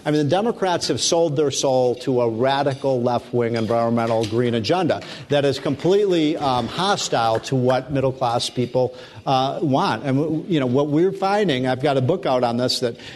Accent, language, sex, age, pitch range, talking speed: American, English, male, 50-69, 125-155 Hz, 180 wpm